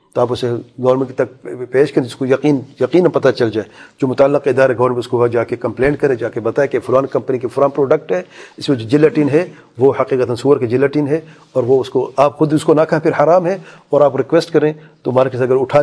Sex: male